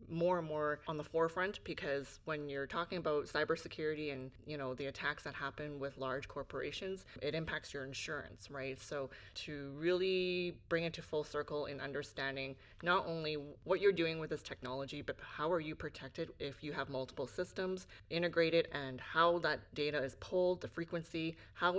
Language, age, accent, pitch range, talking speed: English, 20-39, American, 135-160 Hz, 180 wpm